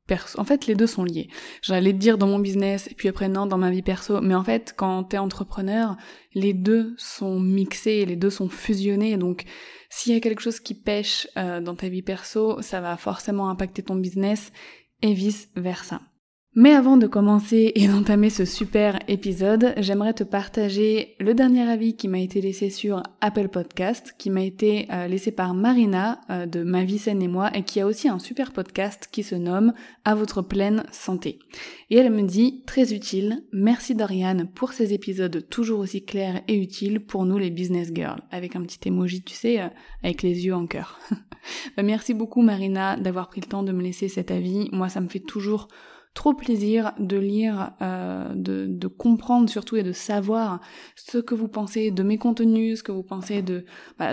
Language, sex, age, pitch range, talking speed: French, female, 20-39, 185-220 Hz, 200 wpm